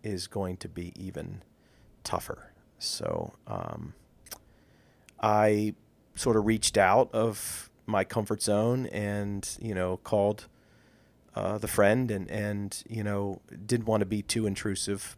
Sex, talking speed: male, 135 wpm